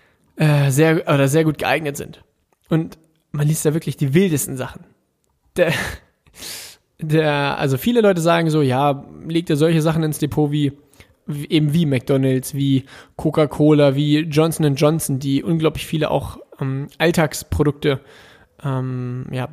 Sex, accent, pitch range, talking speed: male, German, 140-165 Hz, 140 wpm